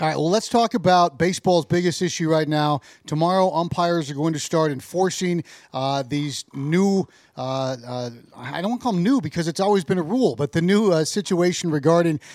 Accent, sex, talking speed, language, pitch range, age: American, male, 200 wpm, English, 155-190 Hz, 40-59